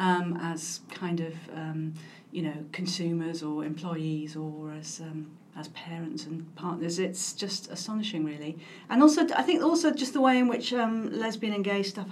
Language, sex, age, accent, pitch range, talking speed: English, female, 40-59, British, 170-200 Hz, 175 wpm